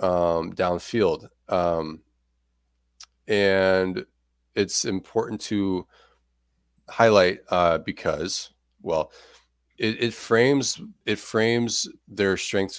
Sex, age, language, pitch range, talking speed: male, 30-49, English, 75-100 Hz, 80 wpm